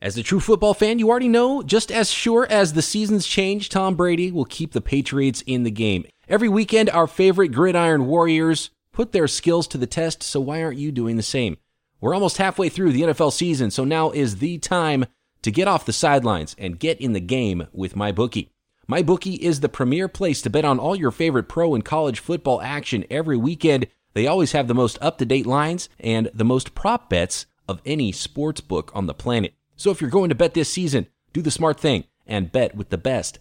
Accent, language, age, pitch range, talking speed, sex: American, English, 30-49, 120-170 Hz, 220 wpm, male